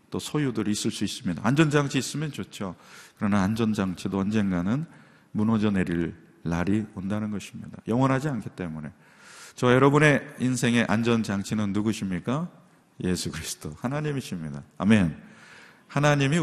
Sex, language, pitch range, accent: male, Korean, 95-130 Hz, native